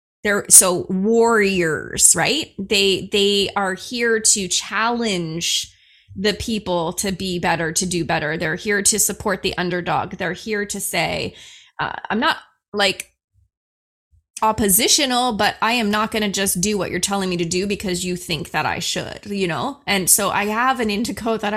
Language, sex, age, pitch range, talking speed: English, female, 20-39, 190-235 Hz, 170 wpm